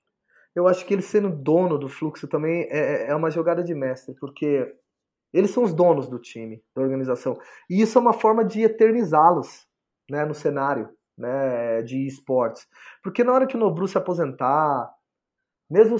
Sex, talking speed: male, 170 wpm